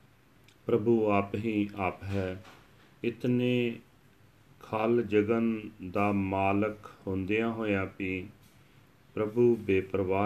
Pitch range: 100-120 Hz